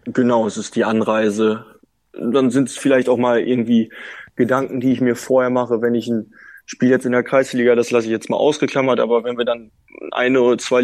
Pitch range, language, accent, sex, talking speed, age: 115-125 Hz, German, German, male, 215 wpm, 20-39